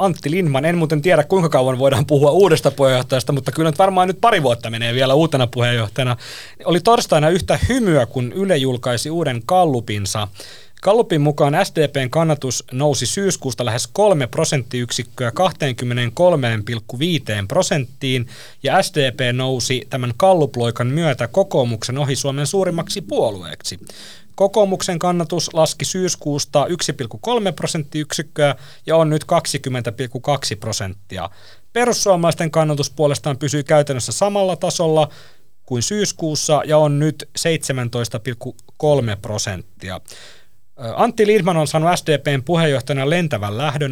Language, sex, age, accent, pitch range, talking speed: Finnish, male, 30-49, native, 125-165 Hz, 120 wpm